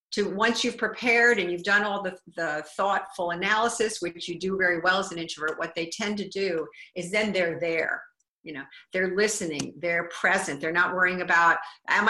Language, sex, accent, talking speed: English, female, American, 195 wpm